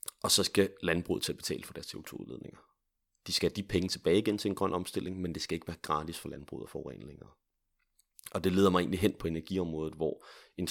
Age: 30-49